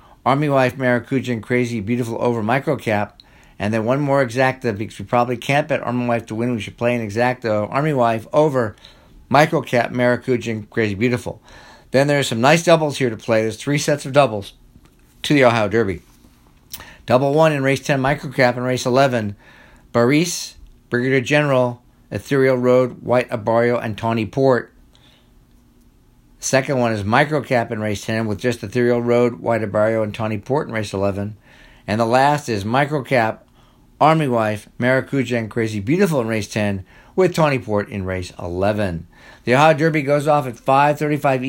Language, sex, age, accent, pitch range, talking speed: English, male, 50-69, American, 115-135 Hz, 165 wpm